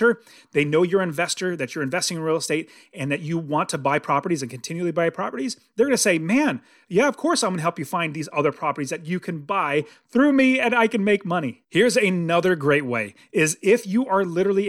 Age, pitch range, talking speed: 30-49, 160-215 Hz, 235 wpm